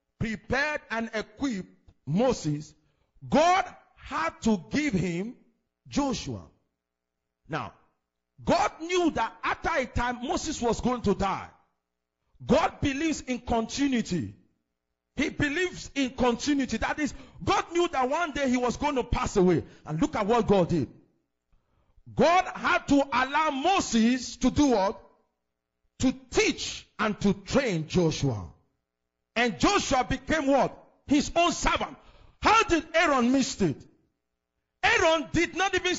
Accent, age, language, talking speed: Nigerian, 50-69, English, 130 wpm